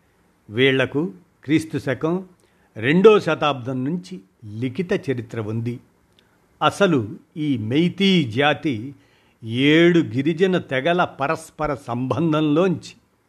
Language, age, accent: Telugu, 50-69, native